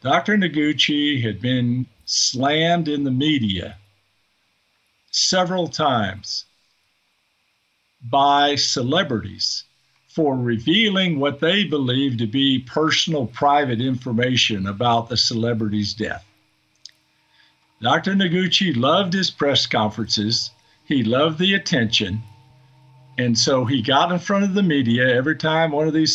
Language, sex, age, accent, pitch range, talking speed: English, male, 50-69, American, 120-155 Hz, 115 wpm